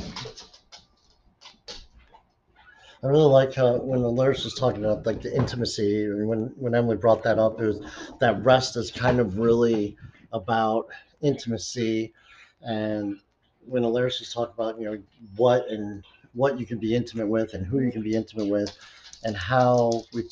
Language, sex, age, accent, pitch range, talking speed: English, male, 50-69, American, 105-125 Hz, 165 wpm